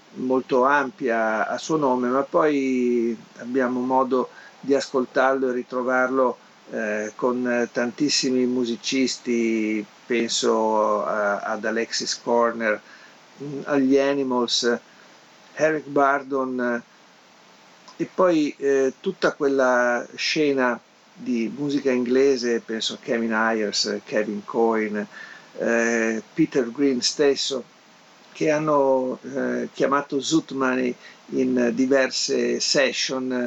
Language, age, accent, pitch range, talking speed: Italian, 50-69, native, 120-150 Hz, 90 wpm